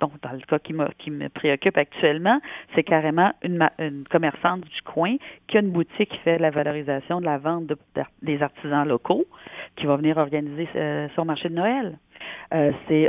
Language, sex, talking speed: French, female, 185 wpm